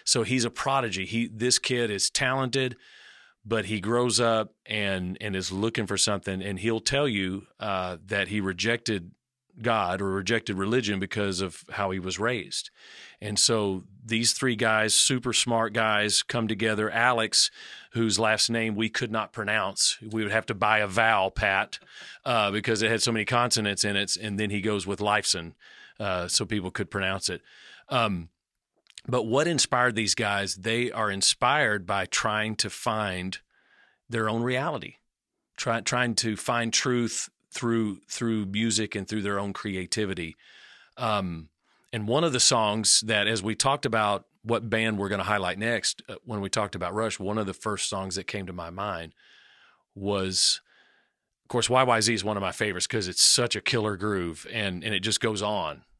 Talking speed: 180 wpm